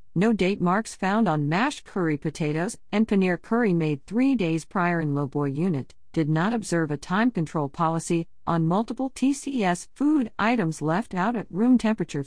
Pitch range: 155-210 Hz